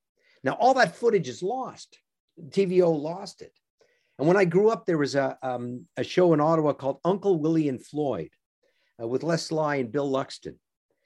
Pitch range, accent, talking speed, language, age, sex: 130-180 Hz, American, 185 wpm, English, 50-69, male